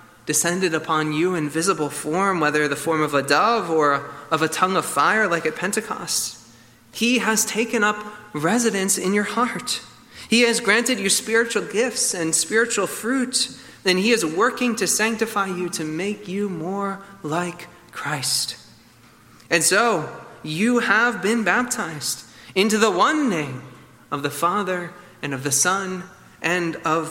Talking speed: 155 wpm